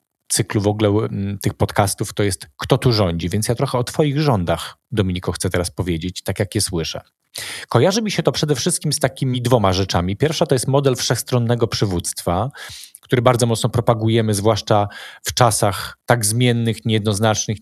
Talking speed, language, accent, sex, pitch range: 170 wpm, Polish, native, male, 105-135 Hz